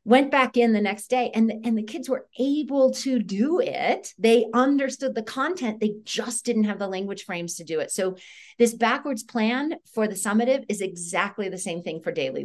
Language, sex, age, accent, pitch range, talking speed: English, female, 40-59, American, 165-230 Hz, 210 wpm